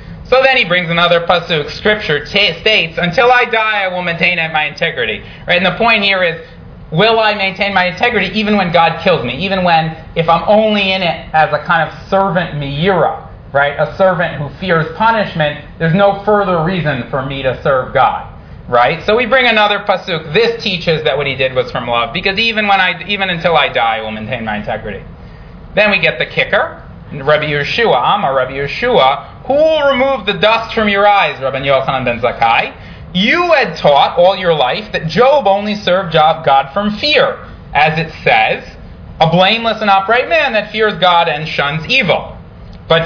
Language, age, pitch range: English, 30-49, 150-210 Hz